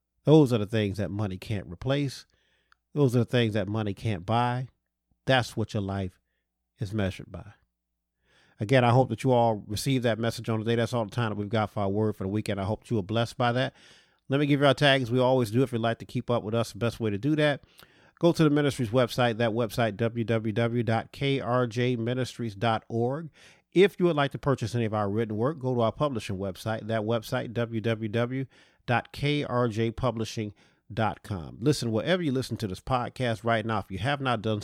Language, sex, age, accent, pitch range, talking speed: English, male, 40-59, American, 105-130 Hz, 210 wpm